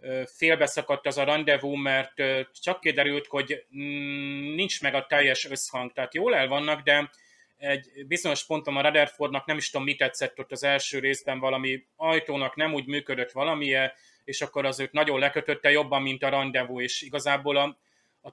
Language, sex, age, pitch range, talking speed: Hungarian, male, 30-49, 130-145 Hz, 165 wpm